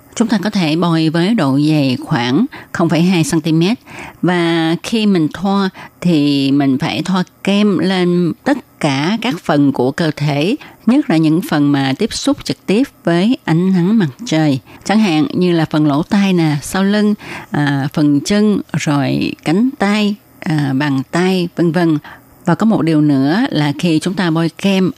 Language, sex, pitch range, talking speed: Vietnamese, female, 150-195 Hz, 175 wpm